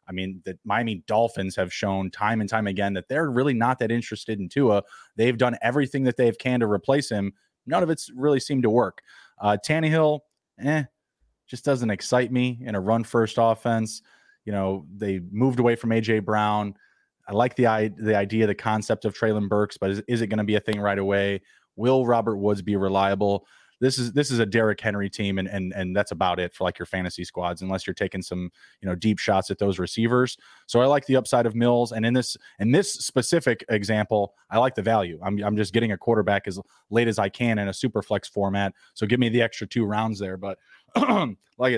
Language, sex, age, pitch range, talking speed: English, male, 20-39, 95-115 Hz, 220 wpm